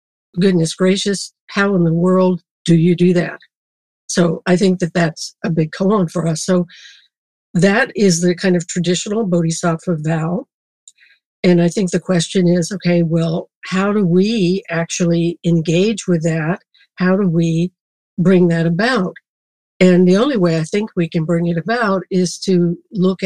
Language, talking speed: English, 165 wpm